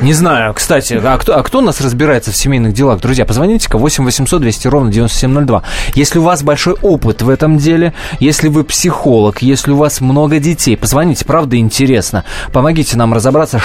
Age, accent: 20-39, native